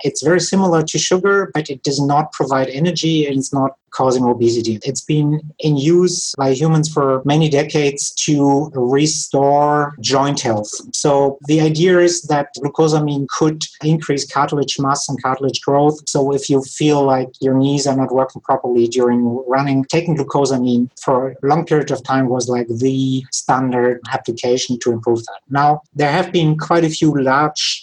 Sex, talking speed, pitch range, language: male, 170 wpm, 130-150 Hz, English